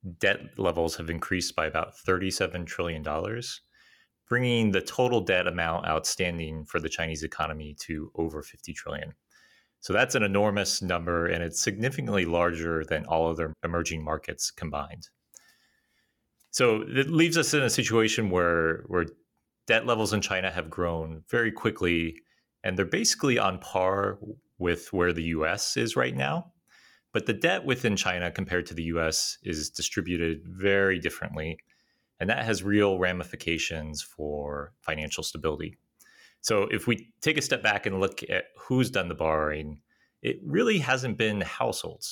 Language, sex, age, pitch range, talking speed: English, male, 30-49, 80-105 Hz, 150 wpm